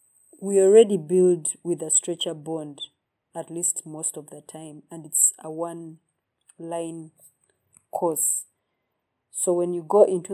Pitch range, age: 155-175 Hz, 30-49